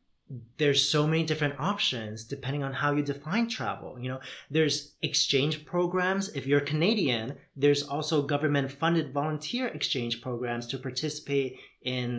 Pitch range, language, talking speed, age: 125-150 Hz, English, 140 wpm, 30-49